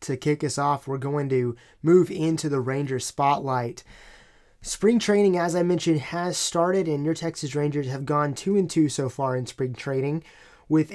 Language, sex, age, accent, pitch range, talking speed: English, male, 20-39, American, 140-165 Hz, 190 wpm